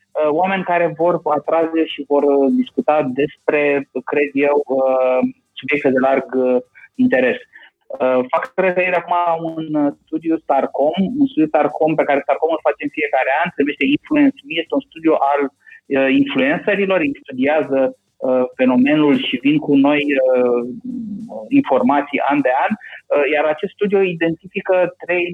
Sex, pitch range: male, 140-200 Hz